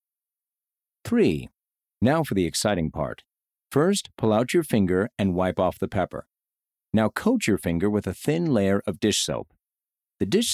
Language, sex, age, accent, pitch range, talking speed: English, male, 50-69, American, 100-145 Hz, 165 wpm